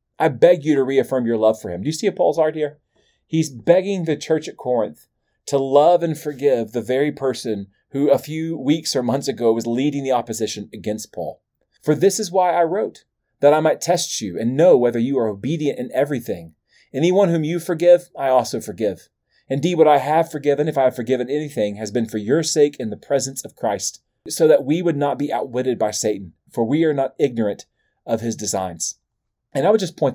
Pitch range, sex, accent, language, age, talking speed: 115-155 Hz, male, American, English, 30-49, 220 wpm